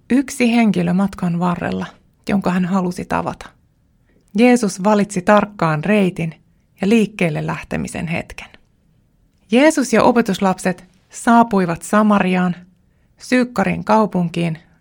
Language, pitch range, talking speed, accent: Finnish, 180-230 Hz, 95 wpm, native